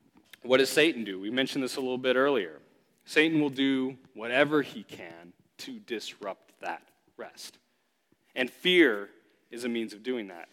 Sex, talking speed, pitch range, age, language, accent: male, 165 wpm, 125-175 Hz, 40-59, English, American